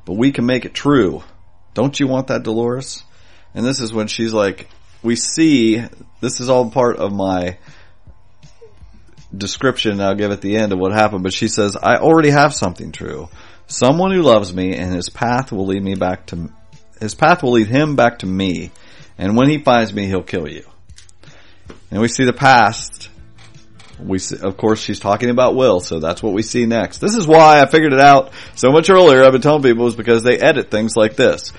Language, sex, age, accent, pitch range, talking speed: English, male, 40-59, American, 95-130 Hz, 205 wpm